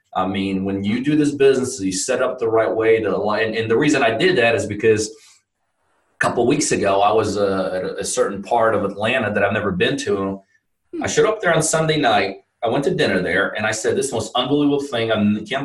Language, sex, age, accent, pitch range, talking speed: English, male, 30-49, American, 110-160 Hz, 235 wpm